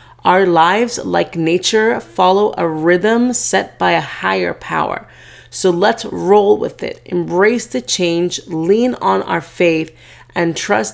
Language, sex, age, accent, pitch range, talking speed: English, female, 30-49, American, 150-210 Hz, 145 wpm